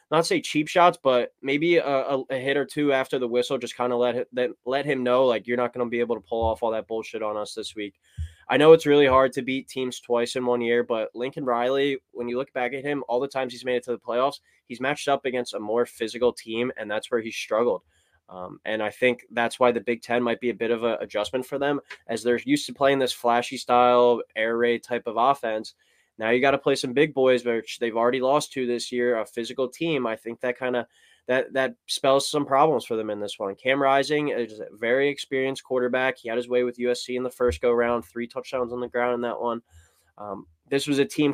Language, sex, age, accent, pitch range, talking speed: English, male, 20-39, American, 120-135 Hz, 255 wpm